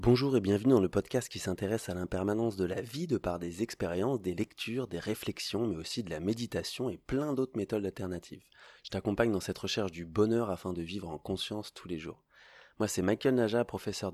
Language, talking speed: French, 215 wpm